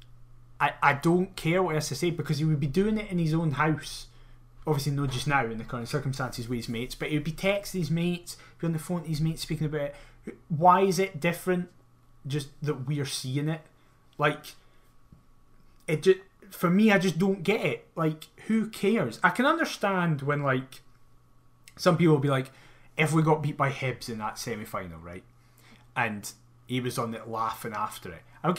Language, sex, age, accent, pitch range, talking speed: English, male, 20-39, British, 120-170 Hz, 205 wpm